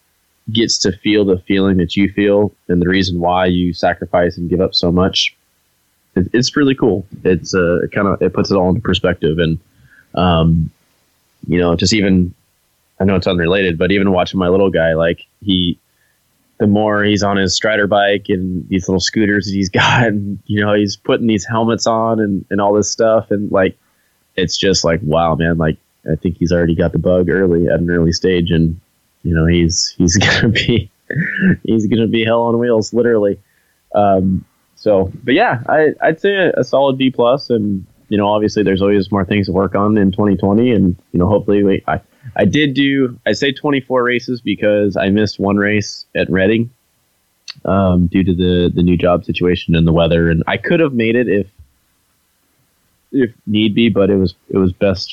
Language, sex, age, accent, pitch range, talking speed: English, male, 20-39, American, 90-105 Hz, 200 wpm